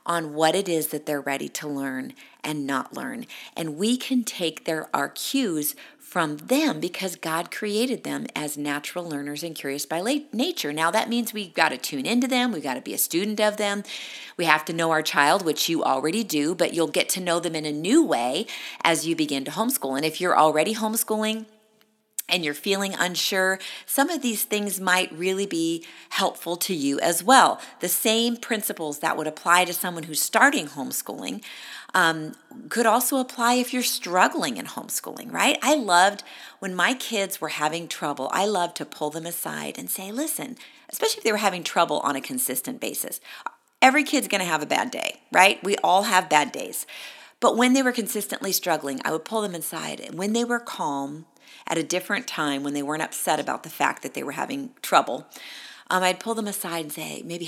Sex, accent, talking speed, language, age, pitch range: female, American, 205 wpm, English, 40-59, 160-235 Hz